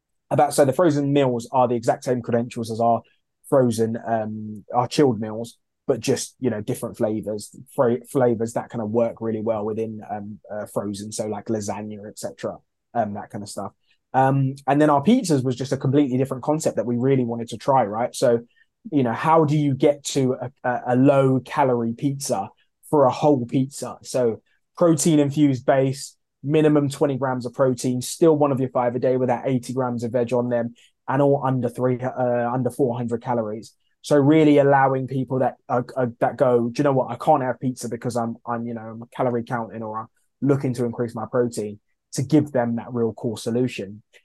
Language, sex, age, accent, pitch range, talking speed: English, male, 20-39, British, 115-140 Hz, 200 wpm